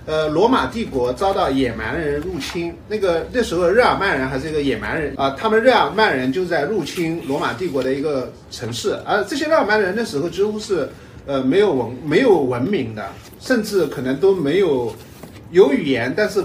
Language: Chinese